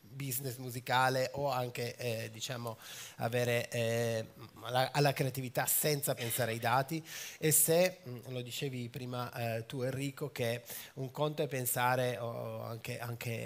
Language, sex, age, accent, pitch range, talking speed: Italian, male, 30-49, native, 120-140 Hz, 135 wpm